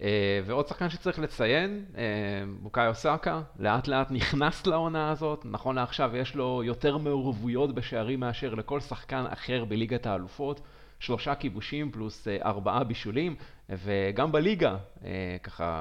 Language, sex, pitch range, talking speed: Hebrew, male, 115-150 Hz, 120 wpm